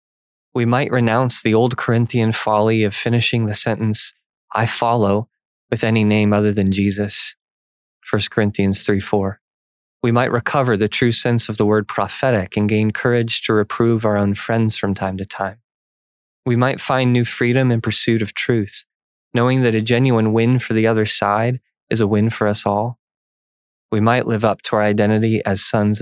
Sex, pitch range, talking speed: male, 105-120 Hz, 180 wpm